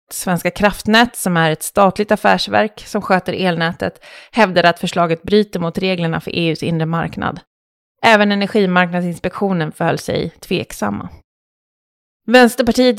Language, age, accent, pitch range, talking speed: Swedish, 30-49, native, 175-230 Hz, 120 wpm